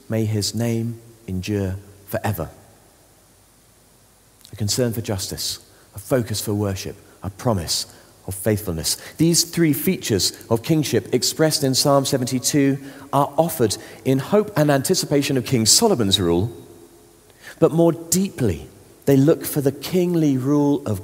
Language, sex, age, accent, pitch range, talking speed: English, male, 40-59, British, 95-130 Hz, 130 wpm